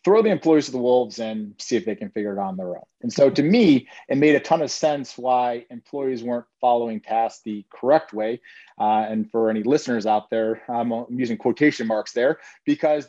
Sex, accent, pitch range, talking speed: male, American, 115-145 Hz, 215 wpm